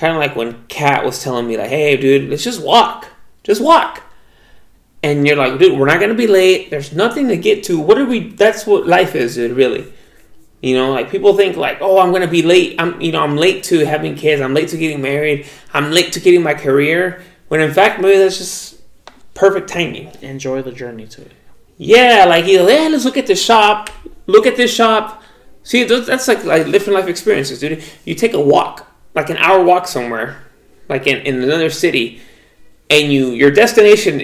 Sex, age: male, 20-39